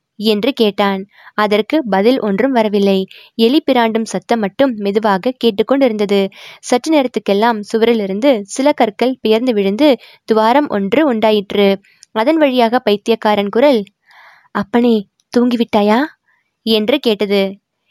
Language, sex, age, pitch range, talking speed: Tamil, female, 20-39, 200-235 Hz, 95 wpm